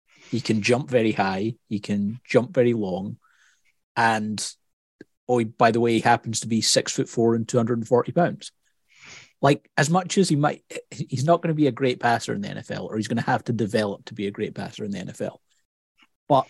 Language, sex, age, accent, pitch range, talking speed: English, male, 30-49, British, 105-135 Hz, 210 wpm